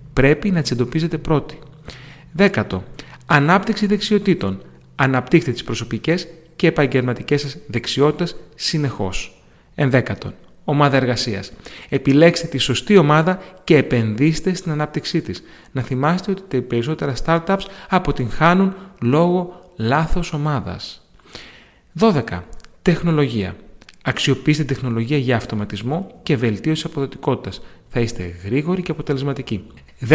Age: 30-49